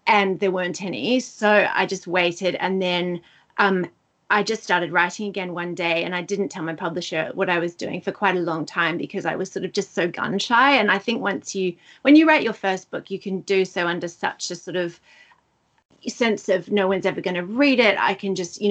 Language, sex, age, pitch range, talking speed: English, female, 30-49, 180-215 Hz, 240 wpm